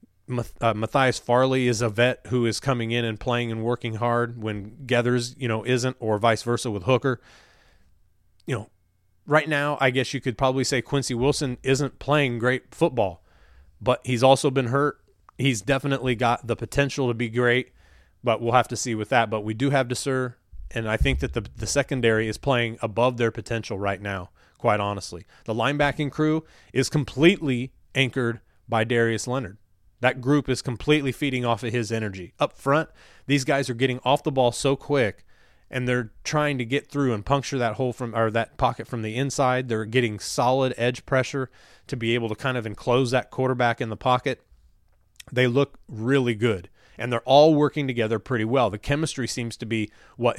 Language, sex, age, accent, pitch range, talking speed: English, male, 30-49, American, 110-135 Hz, 195 wpm